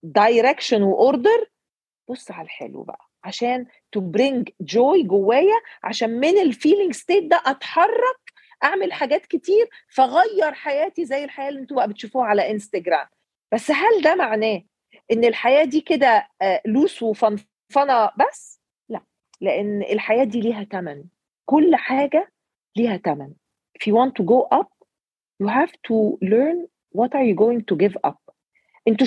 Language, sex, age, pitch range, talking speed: Arabic, female, 40-59, 195-280 Hz, 140 wpm